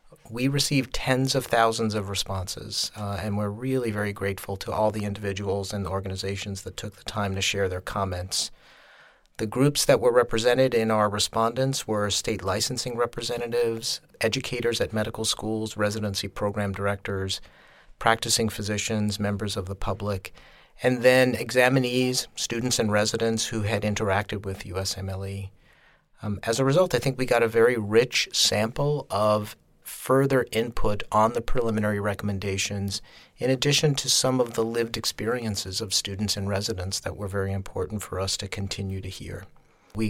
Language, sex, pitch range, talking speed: English, male, 100-115 Hz, 155 wpm